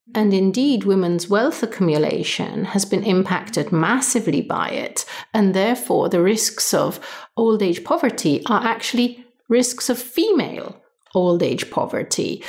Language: German